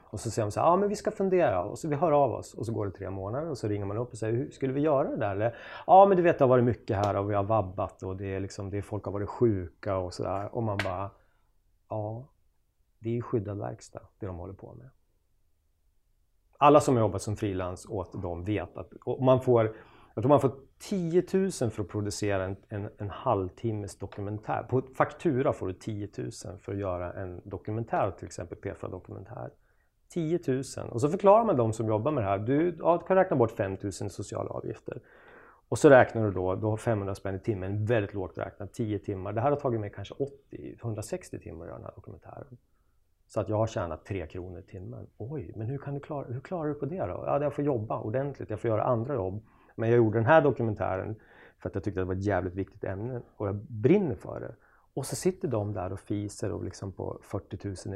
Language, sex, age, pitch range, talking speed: English, male, 30-49, 100-130 Hz, 240 wpm